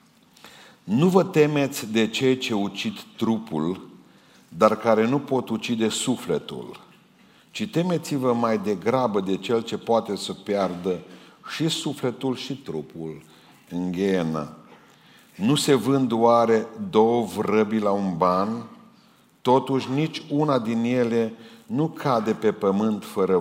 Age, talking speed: 50-69, 130 wpm